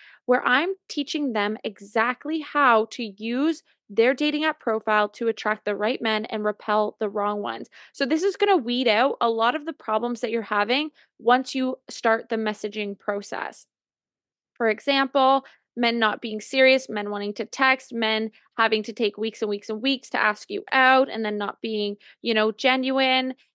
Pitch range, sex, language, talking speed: 215-270 Hz, female, English, 185 wpm